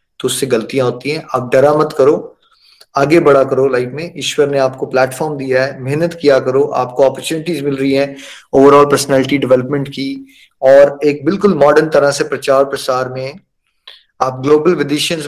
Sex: male